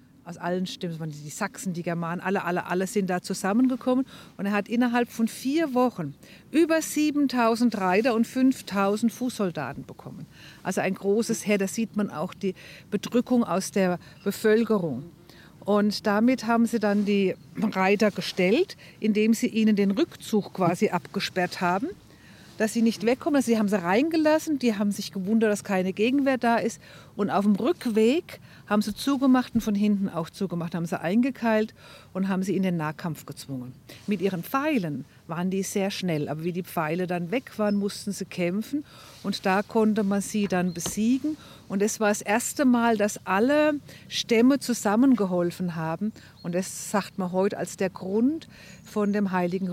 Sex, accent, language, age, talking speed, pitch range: female, German, German, 50-69, 170 wpm, 175-230 Hz